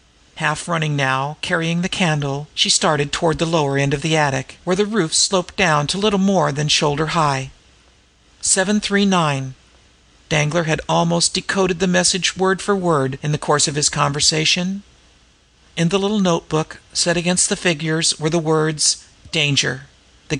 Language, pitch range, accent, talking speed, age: English, 150-180 Hz, American, 160 wpm, 50-69